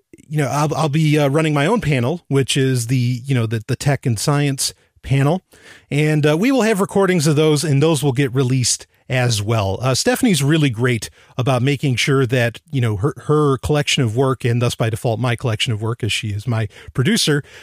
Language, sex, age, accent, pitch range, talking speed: English, male, 40-59, American, 120-150 Hz, 220 wpm